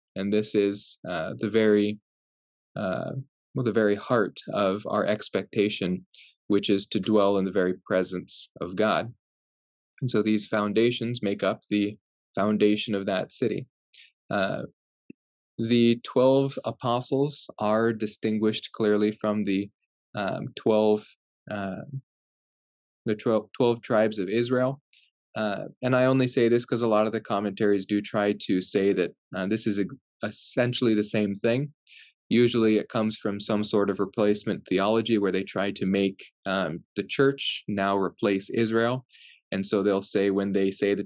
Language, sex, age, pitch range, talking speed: English, male, 20-39, 100-115 Hz, 155 wpm